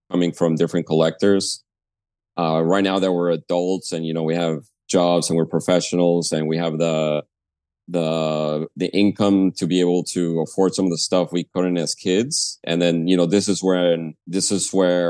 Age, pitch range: 30-49, 80-95 Hz